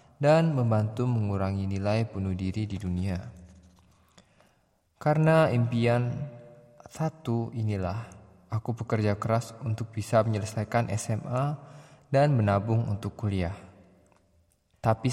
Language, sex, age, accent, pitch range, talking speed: Indonesian, male, 20-39, native, 105-125 Hz, 95 wpm